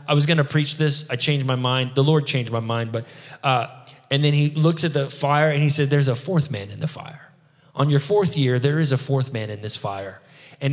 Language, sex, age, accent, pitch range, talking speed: English, male, 20-39, American, 130-150 Hz, 265 wpm